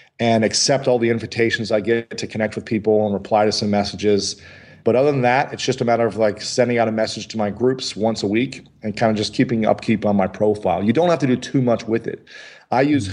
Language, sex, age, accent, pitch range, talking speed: English, male, 40-59, American, 100-125 Hz, 255 wpm